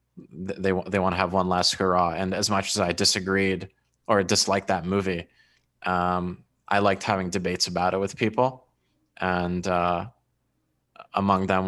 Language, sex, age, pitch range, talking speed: English, male, 20-39, 90-100 Hz, 160 wpm